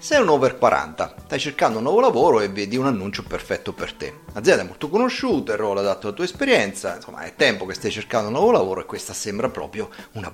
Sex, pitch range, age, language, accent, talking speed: male, 155-225 Hz, 30-49, Italian, native, 230 wpm